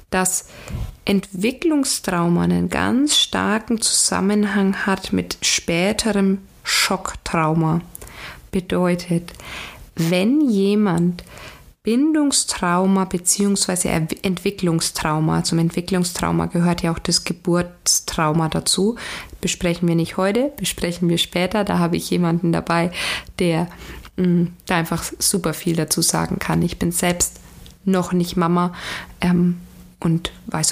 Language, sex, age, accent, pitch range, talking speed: German, female, 20-39, German, 170-195 Hz, 105 wpm